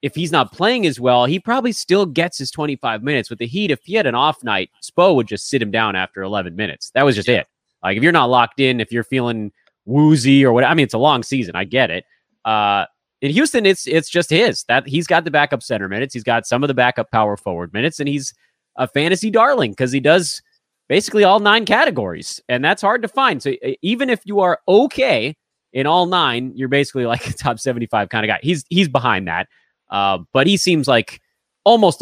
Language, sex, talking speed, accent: English, male, 230 wpm, American